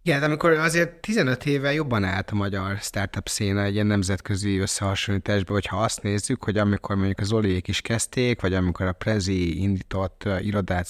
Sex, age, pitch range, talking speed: male, 30-49, 95-110 Hz, 170 wpm